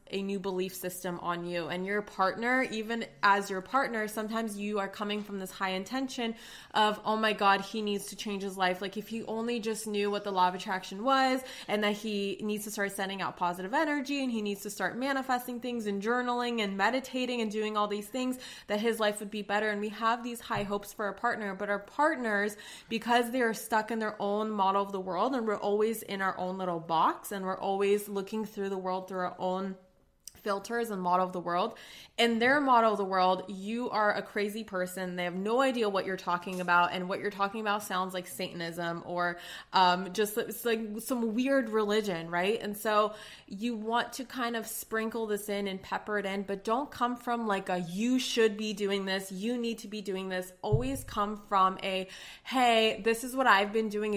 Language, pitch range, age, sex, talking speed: English, 190-225 Hz, 20-39, female, 220 wpm